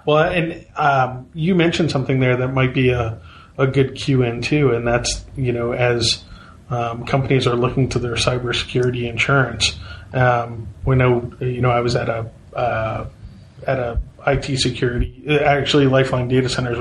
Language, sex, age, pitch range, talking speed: English, male, 30-49, 120-140 Hz, 165 wpm